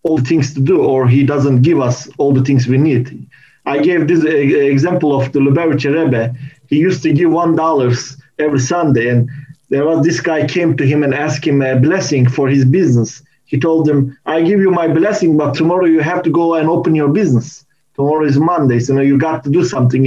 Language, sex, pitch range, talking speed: English, male, 125-150 Hz, 215 wpm